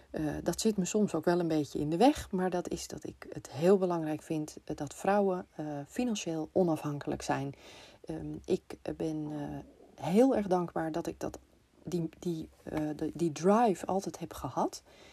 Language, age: Dutch, 40-59